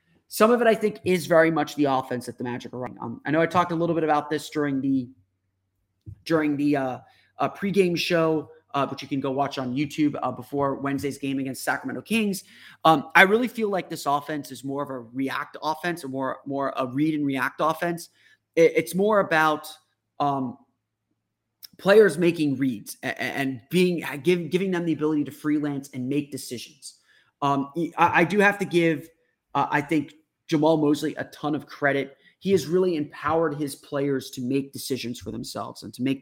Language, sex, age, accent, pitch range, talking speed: English, male, 30-49, American, 135-165 Hz, 200 wpm